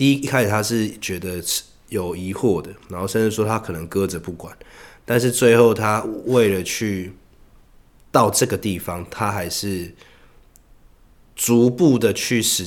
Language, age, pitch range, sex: Chinese, 20-39, 90-110 Hz, male